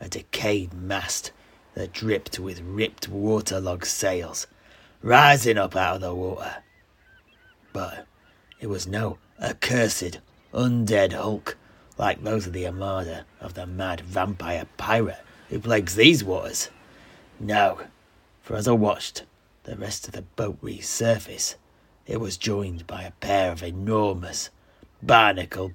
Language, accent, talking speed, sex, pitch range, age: English, British, 130 wpm, male, 90-110 Hz, 30-49